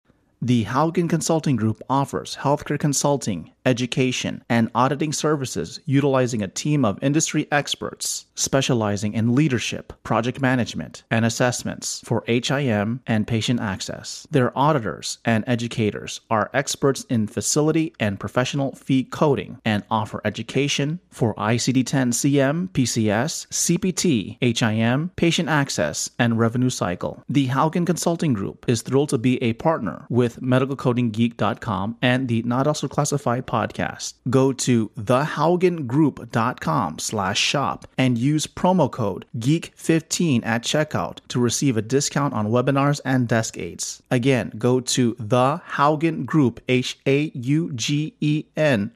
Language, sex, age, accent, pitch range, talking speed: English, male, 30-49, American, 115-145 Hz, 120 wpm